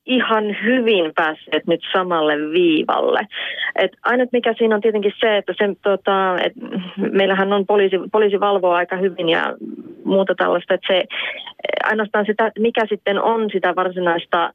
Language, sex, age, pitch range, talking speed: Finnish, female, 30-49, 170-205 Hz, 130 wpm